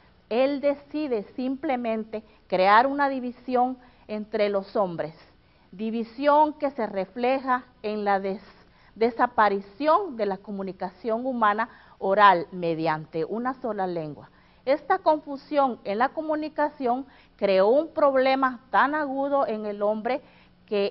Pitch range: 200-280 Hz